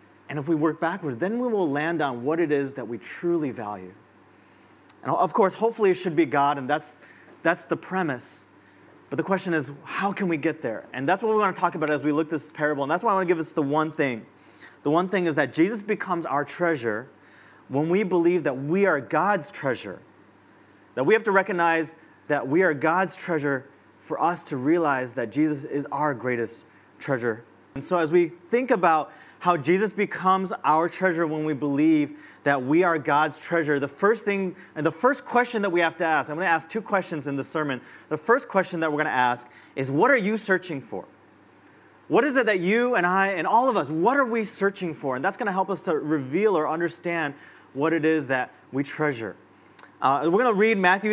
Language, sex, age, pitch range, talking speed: English, male, 30-49, 150-190 Hz, 225 wpm